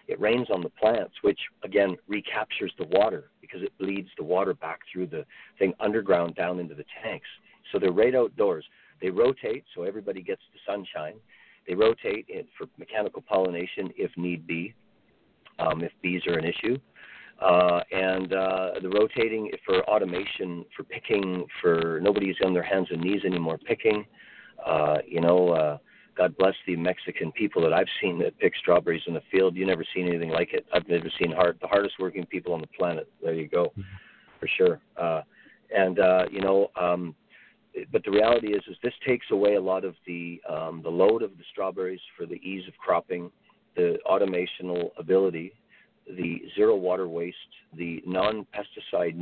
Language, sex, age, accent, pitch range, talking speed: English, male, 50-69, American, 90-110 Hz, 180 wpm